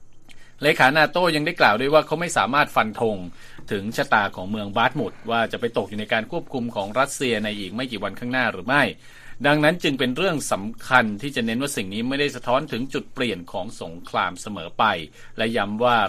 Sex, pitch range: male, 105-135 Hz